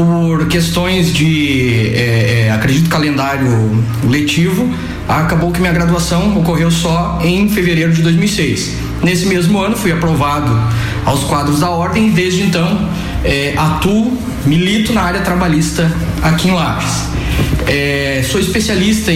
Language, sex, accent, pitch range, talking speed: Portuguese, male, Brazilian, 125-175 Hz, 130 wpm